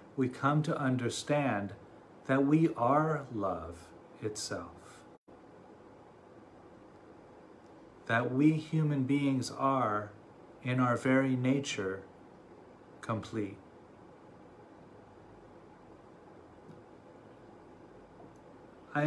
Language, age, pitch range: English, 40-59, 110-135 Hz